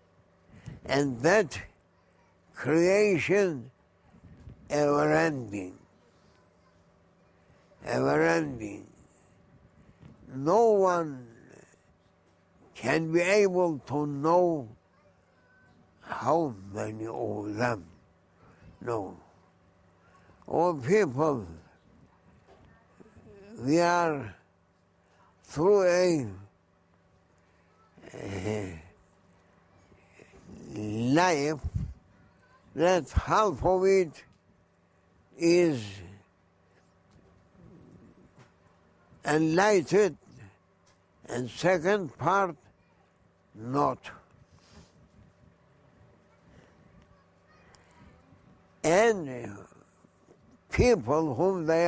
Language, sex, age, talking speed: English, male, 60-79, 45 wpm